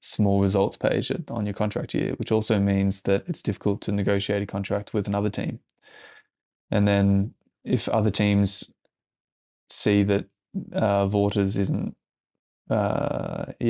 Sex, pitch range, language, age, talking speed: male, 100-110 Hz, English, 20-39, 135 wpm